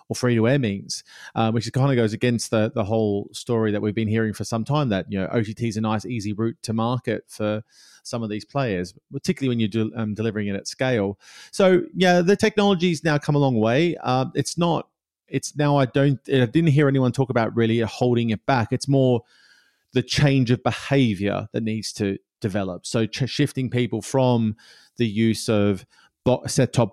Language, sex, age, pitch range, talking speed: English, male, 30-49, 110-140 Hz, 195 wpm